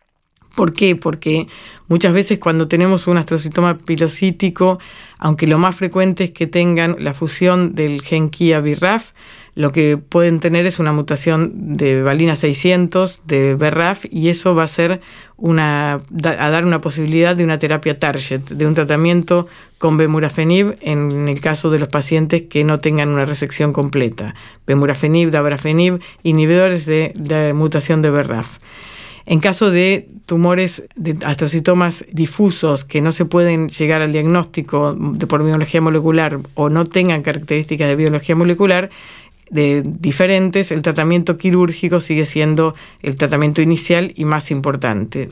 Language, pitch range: Spanish, 150-175 Hz